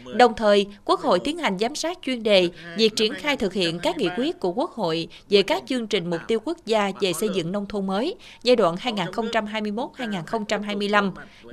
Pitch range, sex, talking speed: 185-245 Hz, female, 200 wpm